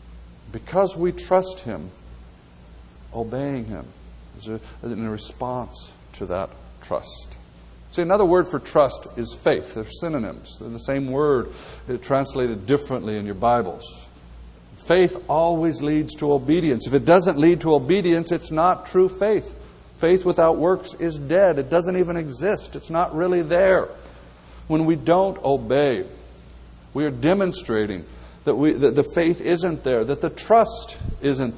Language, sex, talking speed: English, male, 145 wpm